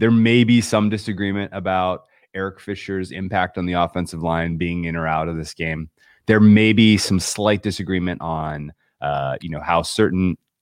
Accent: American